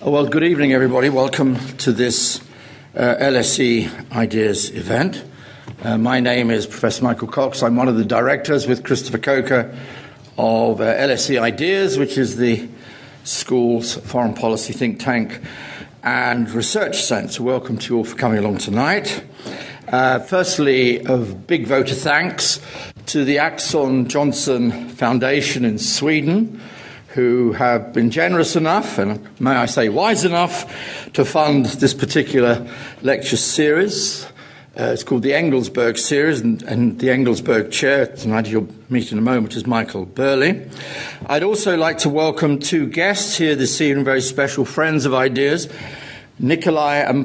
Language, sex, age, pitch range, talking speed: English, male, 60-79, 120-145 Hz, 150 wpm